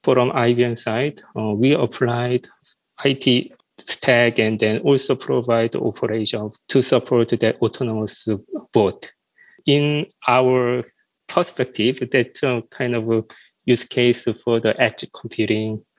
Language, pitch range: English, 115-135 Hz